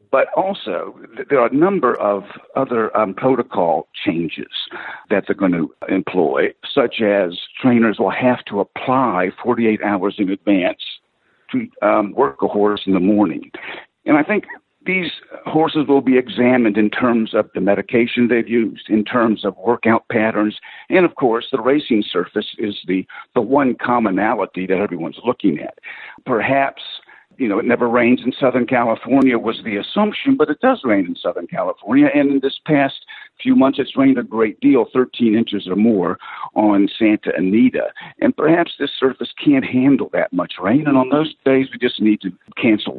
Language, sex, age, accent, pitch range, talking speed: English, male, 60-79, American, 110-150 Hz, 175 wpm